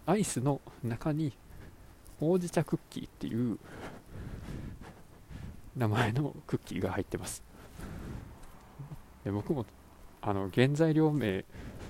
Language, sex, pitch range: Japanese, male, 95-140 Hz